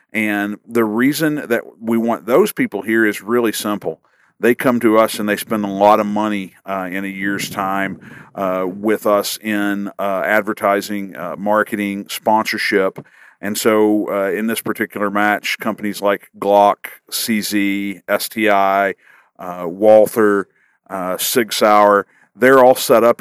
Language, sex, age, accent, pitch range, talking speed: English, male, 50-69, American, 100-110 Hz, 150 wpm